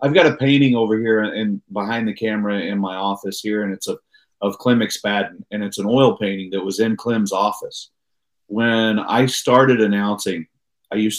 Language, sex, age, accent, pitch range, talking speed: English, male, 40-59, American, 110-155 Hz, 180 wpm